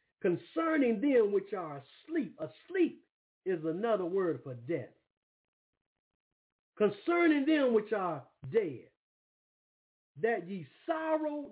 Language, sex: English, male